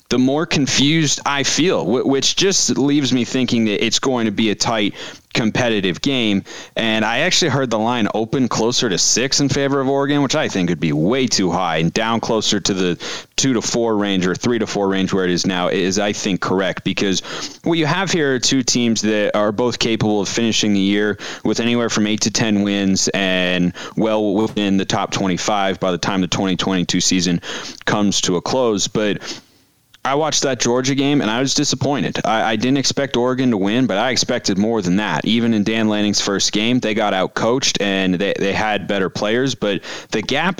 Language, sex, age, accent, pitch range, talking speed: English, male, 30-49, American, 100-130 Hz, 210 wpm